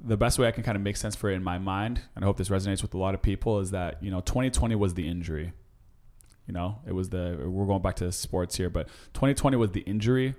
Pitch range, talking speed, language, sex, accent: 90-105 Hz, 275 wpm, English, male, American